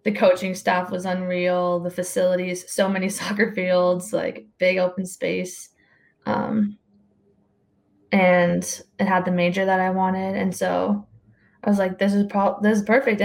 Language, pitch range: English, 180-215 Hz